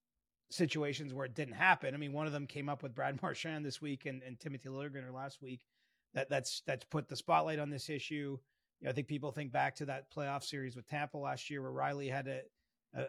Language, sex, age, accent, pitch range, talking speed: English, male, 30-49, American, 140-170 Hz, 240 wpm